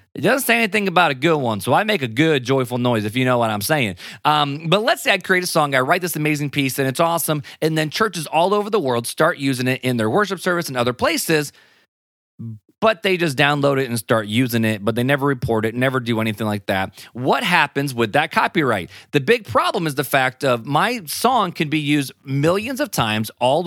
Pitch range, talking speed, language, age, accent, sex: 120-170 Hz, 240 wpm, English, 30-49, American, male